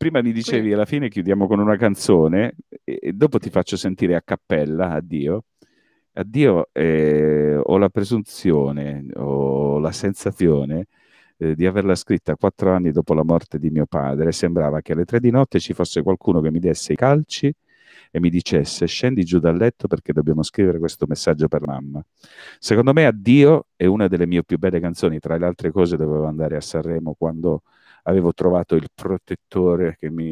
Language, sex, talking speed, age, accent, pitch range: Italian, male, 180 wpm, 50-69, native, 80-105 Hz